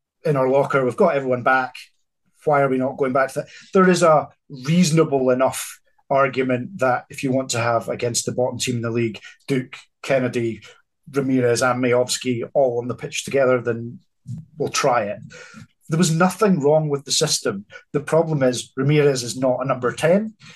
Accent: British